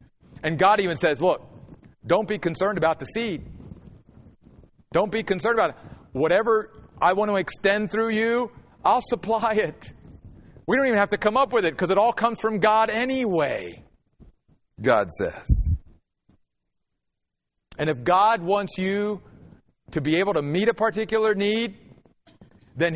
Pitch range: 150-220 Hz